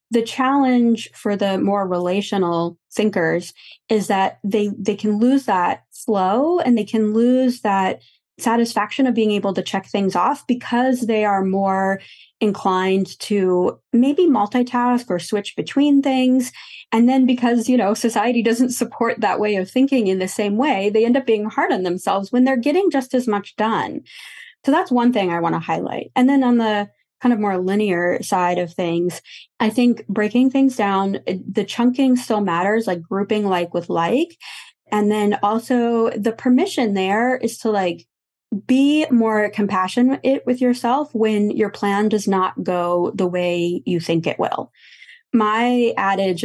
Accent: American